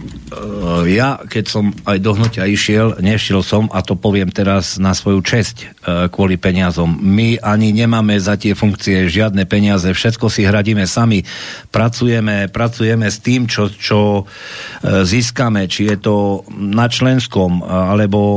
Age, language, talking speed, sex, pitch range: 50-69, Slovak, 140 wpm, male, 100-115 Hz